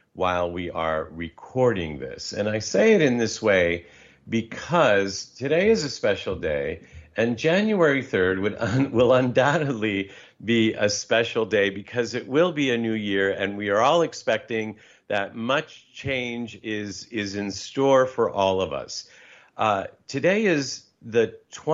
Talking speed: 150 wpm